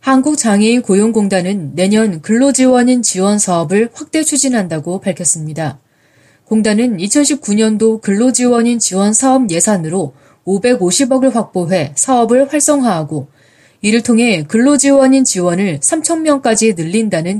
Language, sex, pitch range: Korean, female, 175-250 Hz